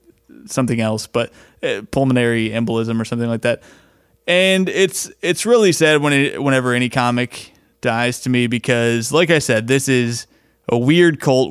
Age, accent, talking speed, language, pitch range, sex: 30-49, American, 165 wpm, English, 115-140 Hz, male